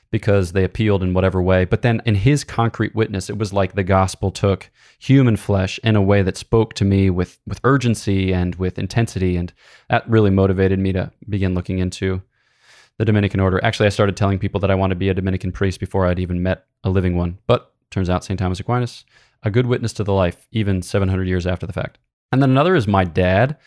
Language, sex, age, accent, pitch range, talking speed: English, male, 20-39, American, 95-120 Hz, 225 wpm